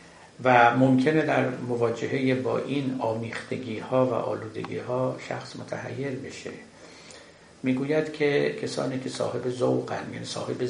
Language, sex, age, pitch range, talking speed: Persian, male, 60-79, 115-135 Hz, 125 wpm